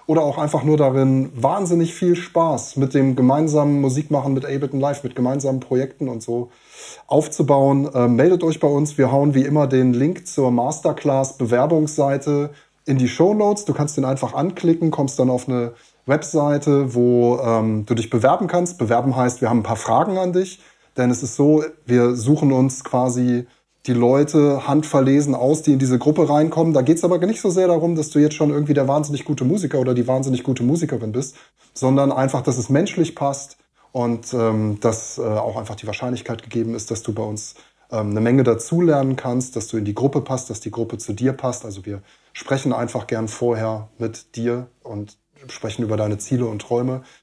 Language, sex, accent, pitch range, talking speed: German, male, German, 120-150 Hz, 195 wpm